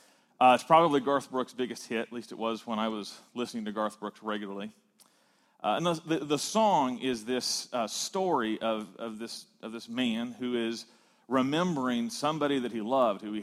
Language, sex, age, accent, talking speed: English, male, 40-59, American, 195 wpm